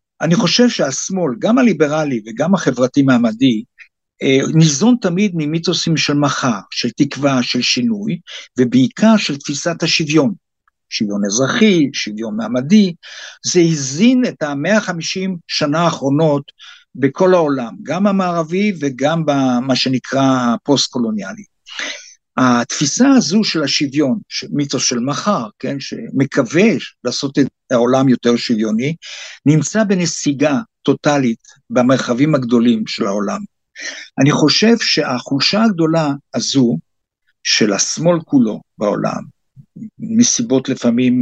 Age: 60-79